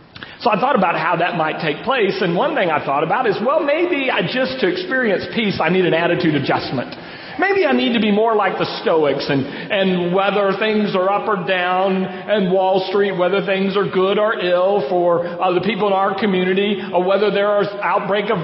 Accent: American